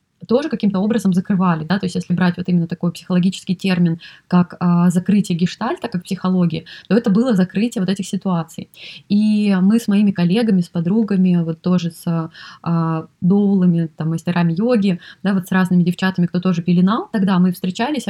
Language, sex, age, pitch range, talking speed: Russian, female, 20-39, 175-200 Hz, 180 wpm